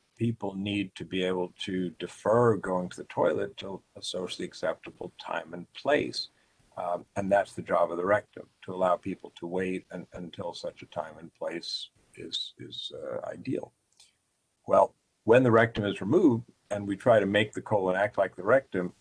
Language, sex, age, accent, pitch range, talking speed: English, male, 50-69, American, 90-110 Hz, 185 wpm